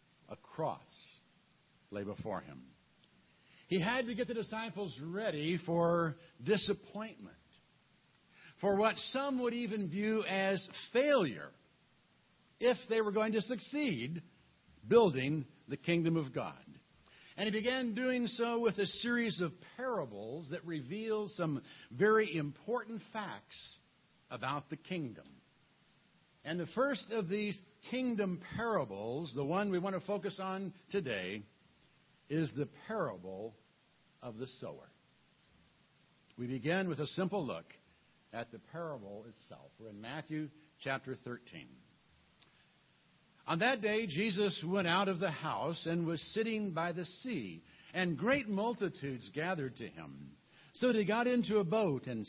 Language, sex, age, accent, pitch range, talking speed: English, male, 60-79, American, 145-215 Hz, 135 wpm